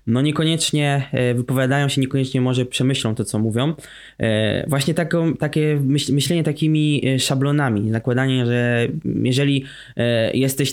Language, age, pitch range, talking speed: Polish, 20-39, 120-140 Hz, 110 wpm